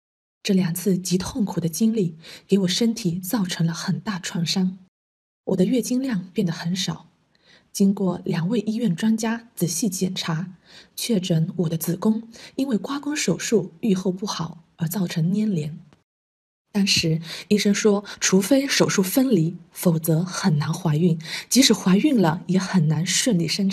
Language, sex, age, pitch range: Chinese, female, 20-39, 170-215 Hz